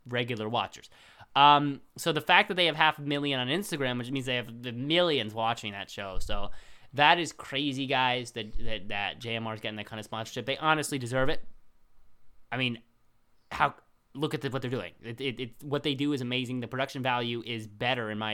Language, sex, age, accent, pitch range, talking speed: English, male, 20-39, American, 110-140 Hz, 210 wpm